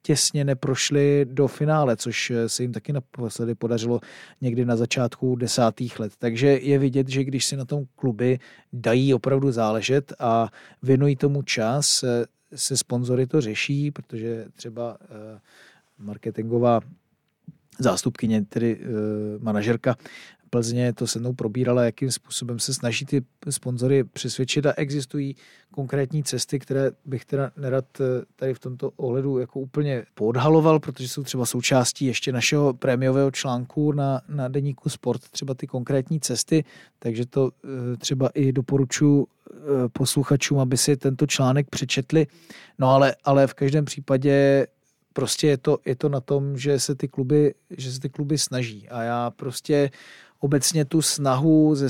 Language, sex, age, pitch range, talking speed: Czech, male, 40-59, 120-140 Hz, 140 wpm